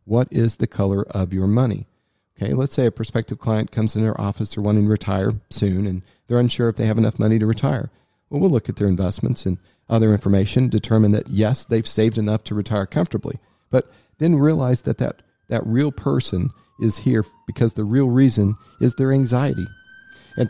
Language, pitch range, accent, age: English, 105-130 Hz, American, 40-59